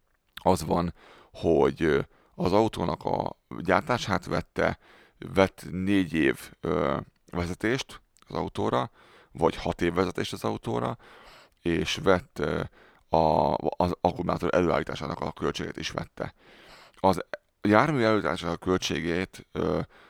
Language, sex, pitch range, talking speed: Hungarian, male, 80-90 Hz, 100 wpm